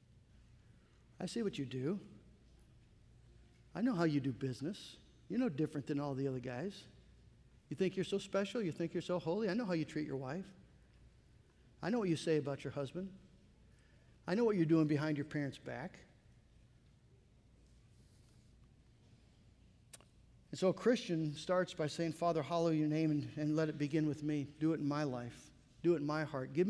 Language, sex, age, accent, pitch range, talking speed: English, male, 50-69, American, 150-205 Hz, 185 wpm